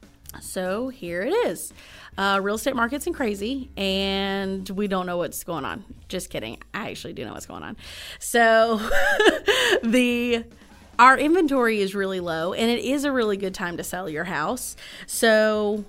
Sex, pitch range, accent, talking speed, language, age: female, 180-220 Hz, American, 170 wpm, English, 30-49